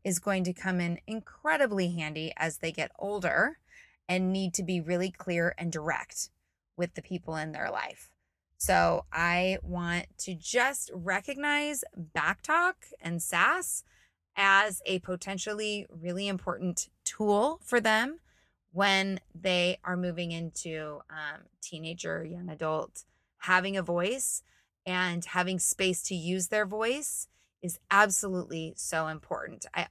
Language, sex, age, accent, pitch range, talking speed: English, female, 20-39, American, 165-200 Hz, 130 wpm